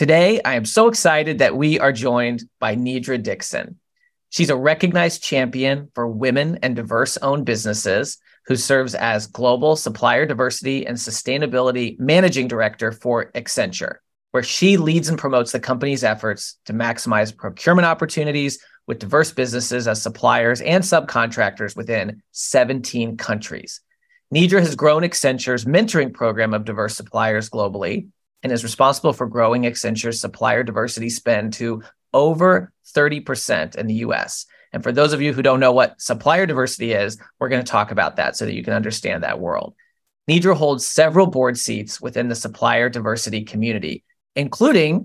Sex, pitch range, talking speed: male, 115-155 Hz, 155 wpm